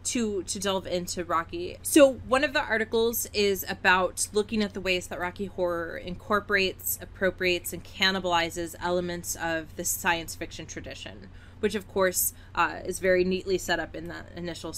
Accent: American